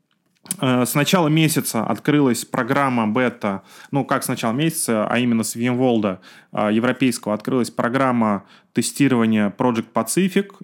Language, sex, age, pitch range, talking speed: Russian, male, 20-39, 110-140 Hz, 120 wpm